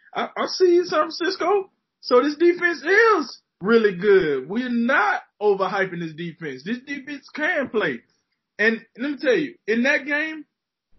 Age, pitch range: 20-39, 175-245 Hz